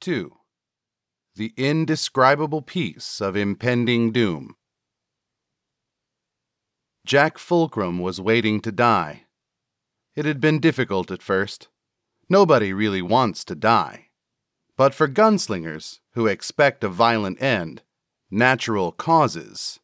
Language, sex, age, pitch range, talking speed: English, male, 40-59, 95-130 Hz, 105 wpm